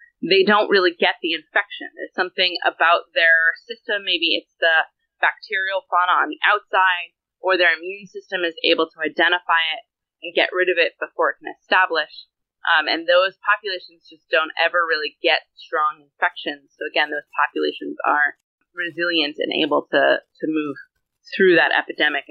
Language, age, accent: English, 20-39, American